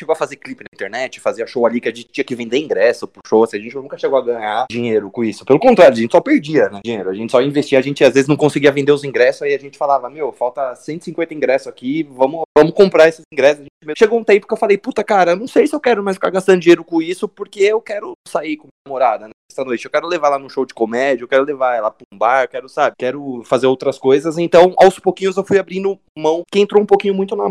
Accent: Brazilian